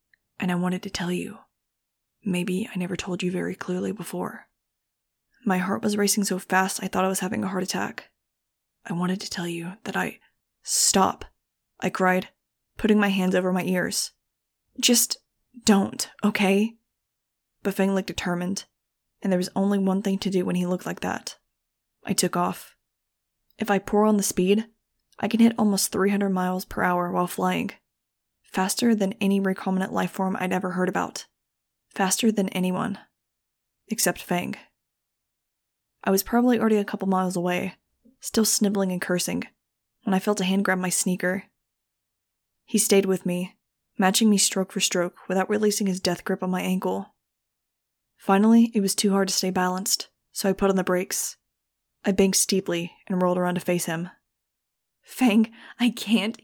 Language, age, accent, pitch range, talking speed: English, 20-39, American, 185-205 Hz, 170 wpm